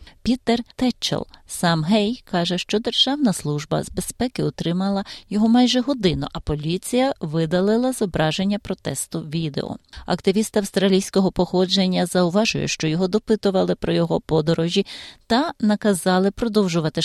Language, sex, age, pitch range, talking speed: Ukrainian, female, 30-49, 165-205 Hz, 120 wpm